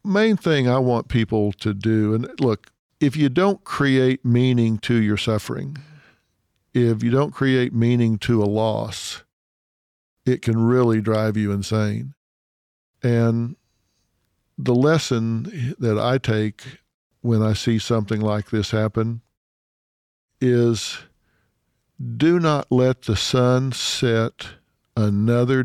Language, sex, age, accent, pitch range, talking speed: English, male, 50-69, American, 110-130 Hz, 120 wpm